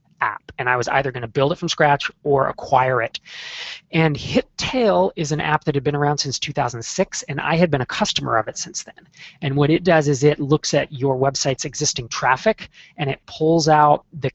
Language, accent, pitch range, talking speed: English, American, 125-155 Hz, 220 wpm